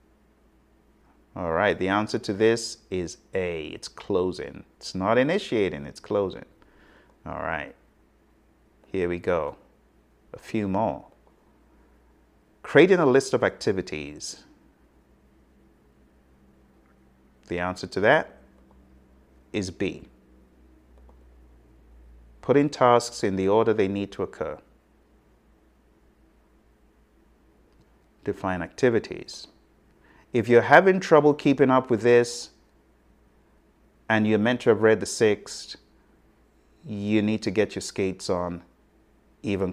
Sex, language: male, English